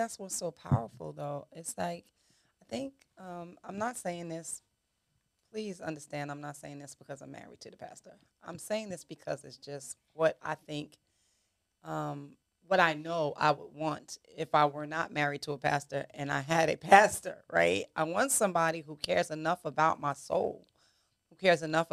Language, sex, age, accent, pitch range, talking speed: English, female, 30-49, American, 150-180 Hz, 185 wpm